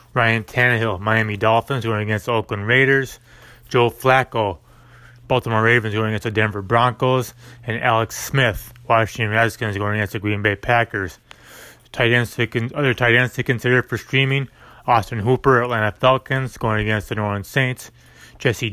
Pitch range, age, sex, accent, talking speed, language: 110-125 Hz, 30-49, male, American, 165 wpm, English